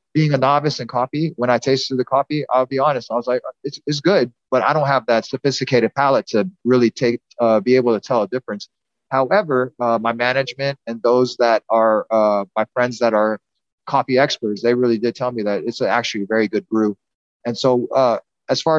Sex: male